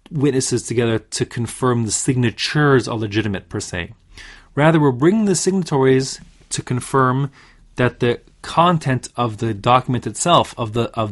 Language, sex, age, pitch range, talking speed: English, male, 30-49, 110-155 Hz, 145 wpm